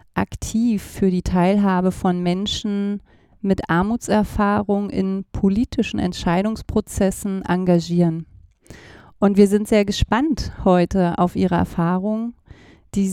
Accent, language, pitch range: German, German, 175-205 Hz